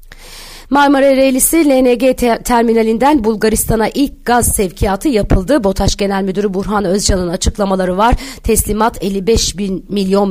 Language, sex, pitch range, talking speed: Turkish, female, 190-225 Hz, 115 wpm